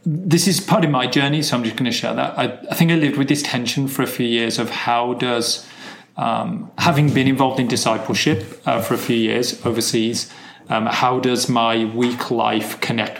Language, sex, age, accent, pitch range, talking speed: English, male, 30-49, British, 115-135 Hz, 215 wpm